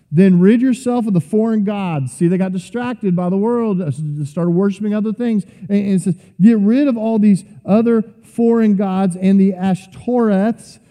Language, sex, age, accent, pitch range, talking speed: English, male, 40-59, American, 180-225 Hz, 175 wpm